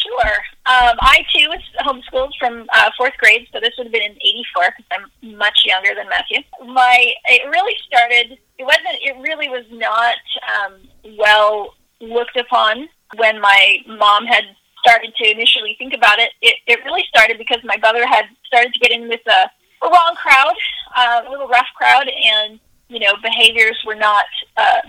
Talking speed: 180 wpm